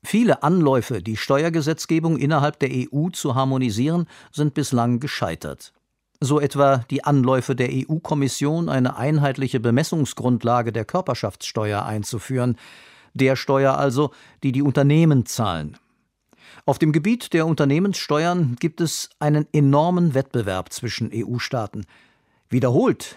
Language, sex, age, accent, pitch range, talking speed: German, male, 50-69, German, 125-155 Hz, 115 wpm